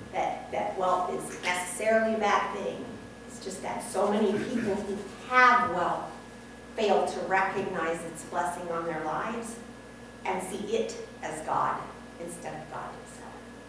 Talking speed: 145 wpm